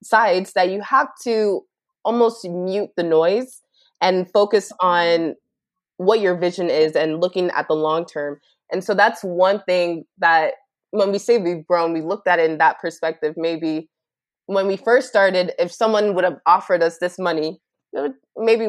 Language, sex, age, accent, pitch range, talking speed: English, female, 20-39, American, 165-195 Hz, 175 wpm